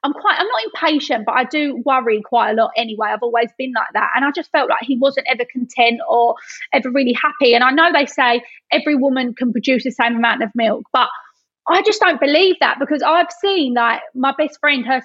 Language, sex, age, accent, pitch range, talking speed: English, female, 20-39, British, 245-320 Hz, 235 wpm